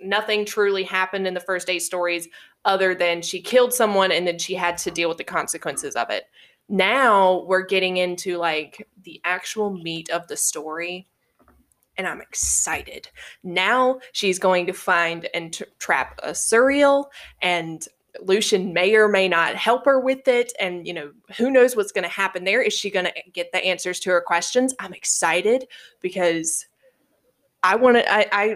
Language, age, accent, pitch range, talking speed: English, 20-39, American, 175-210 Hz, 175 wpm